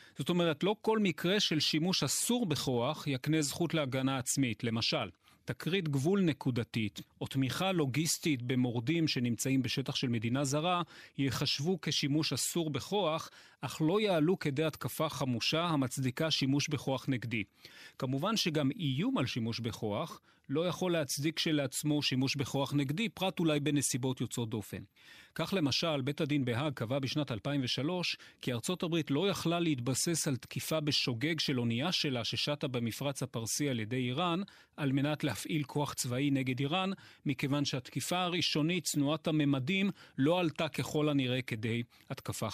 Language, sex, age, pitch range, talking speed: Hebrew, male, 40-59, 130-160 Hz, 145 wpm